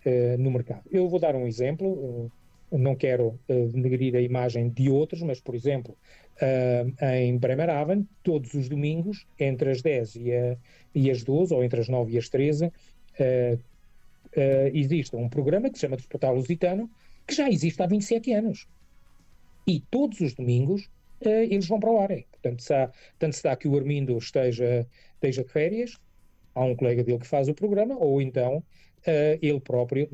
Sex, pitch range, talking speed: male, 125-165 Hz, 160 wpm